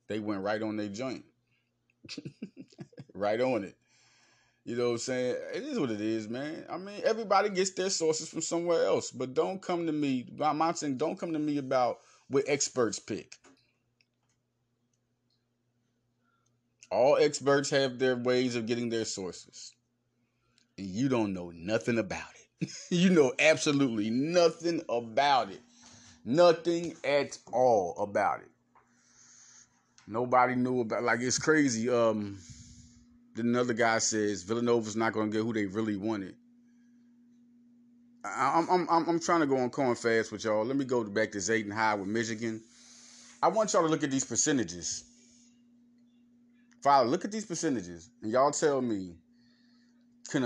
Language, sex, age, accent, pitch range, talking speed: English, male, 30-49, American, 115-170 Hz, 155 wpm